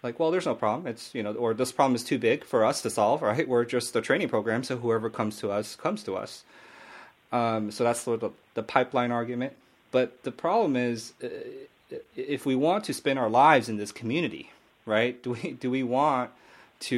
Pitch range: 110-125 Hz